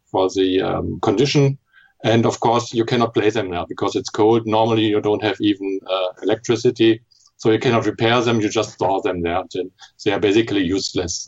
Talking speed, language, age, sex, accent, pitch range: 195 wpm, English, 50-69, male, German, 105-130 Hz